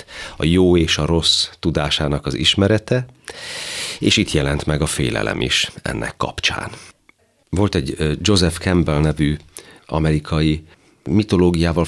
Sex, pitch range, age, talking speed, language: male, 70-90 Hz, 40-59, 120 wpm, Hungarian